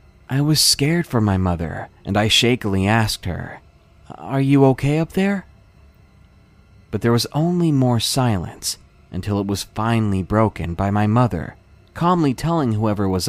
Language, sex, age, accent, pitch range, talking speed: English, male, 30-49, American, 95-140 Hz, 155 wpm